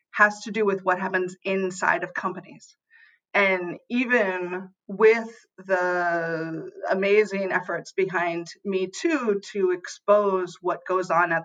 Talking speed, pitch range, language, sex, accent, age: 125 wpm, 180-225 Hz, English, female, American, 30-49